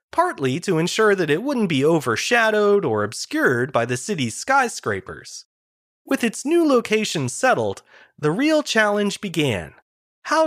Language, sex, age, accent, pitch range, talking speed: English, male, 30-49, American, 150-255 Hz, 140 wpm